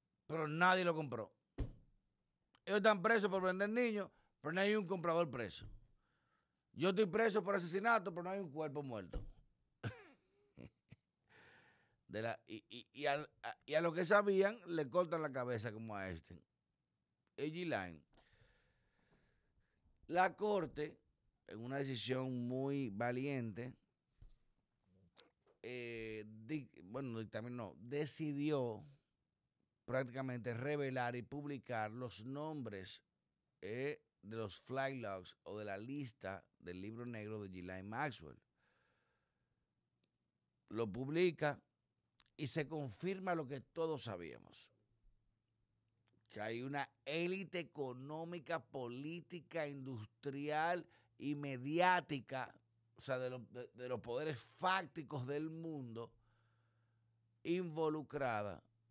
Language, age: Spanish, 50-69